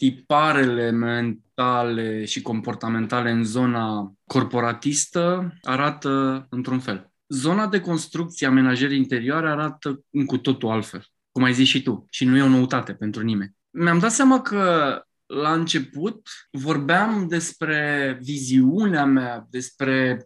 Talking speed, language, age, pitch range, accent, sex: 125 wpm, Romanian, 20-39, 135-195 Hz, native, male